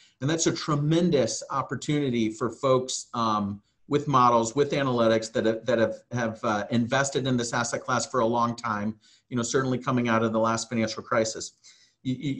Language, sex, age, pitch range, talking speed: English, male, 40-59, 115-145 Hz, 185 wpm